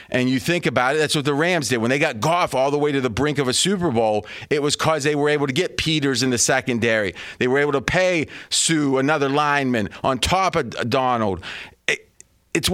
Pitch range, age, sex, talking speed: 125-165 Hz, 40-59, male, 230 wpm